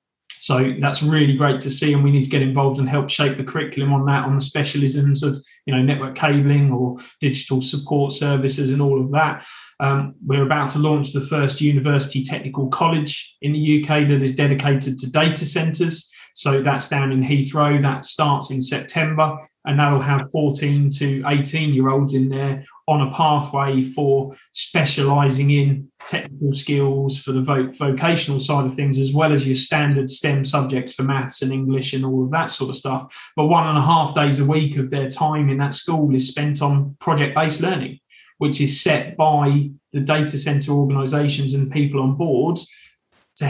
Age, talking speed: 20-39, 190 wpm